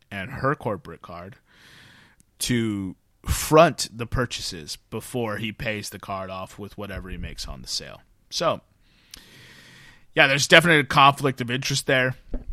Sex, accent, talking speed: male, American, 145 wpm